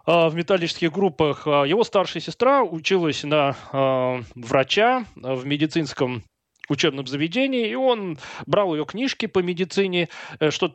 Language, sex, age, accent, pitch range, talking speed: Russian, male, 20-39, native, 140-190 Hz, 125 wpm